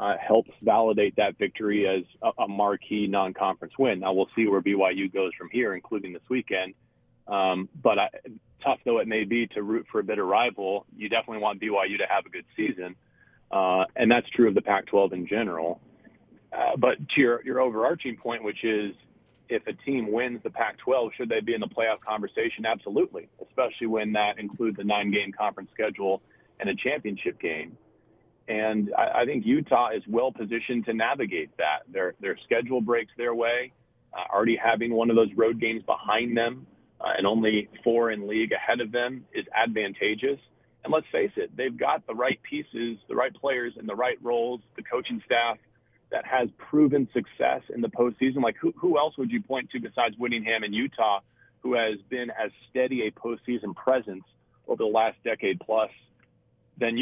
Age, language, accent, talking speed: 30-49, English, American, 185 wpm